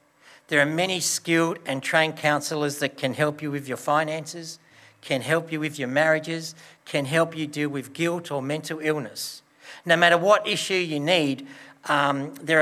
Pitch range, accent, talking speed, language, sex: 140-170 Hz, Australian, 175 wpm, English, male